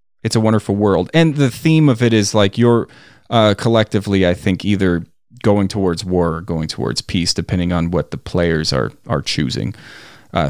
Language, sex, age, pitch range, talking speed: English, male, 30-49, 100-140 Hz, 190 wpm